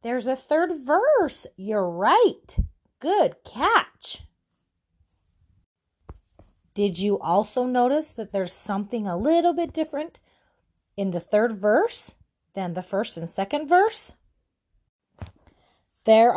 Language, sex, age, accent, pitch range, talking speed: English, female, 30-49, American, 175-245 Hz, 110 wpm